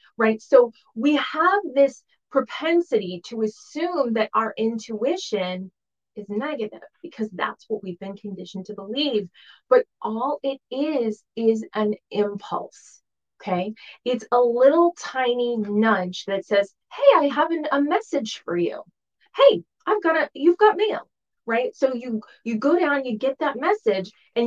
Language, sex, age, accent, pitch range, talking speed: English, female, 20-39, American, 190-275 Hz, 150 wpm